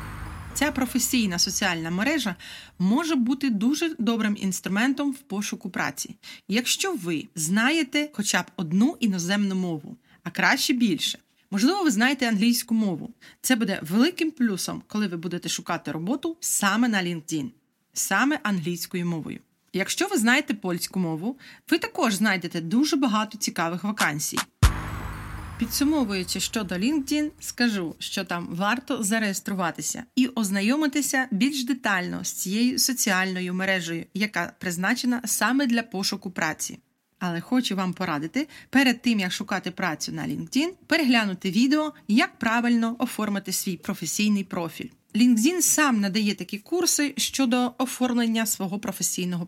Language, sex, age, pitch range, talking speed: Ukrainian, female, 30-49, 185-255 Hz, 125 wpm